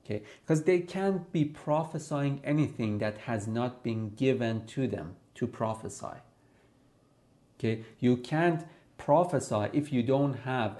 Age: 40-59